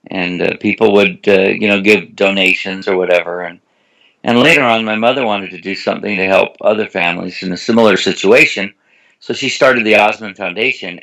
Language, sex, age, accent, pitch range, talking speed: English, male, 60-79, American, 90-105 Hz, 190 wpm